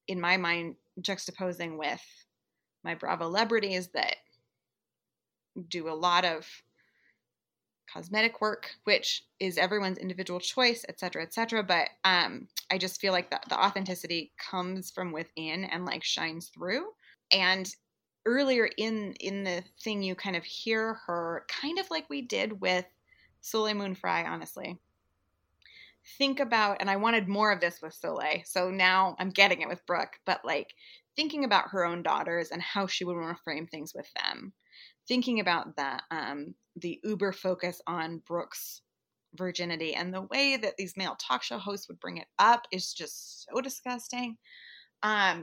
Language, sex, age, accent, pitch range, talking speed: English, female, 20-39, American, 175-215 Hz, 160 wpm